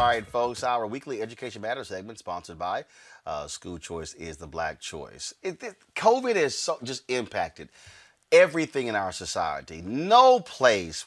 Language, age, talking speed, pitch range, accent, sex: English, 30-49, 165 wpm, 95-140 Hz, American, male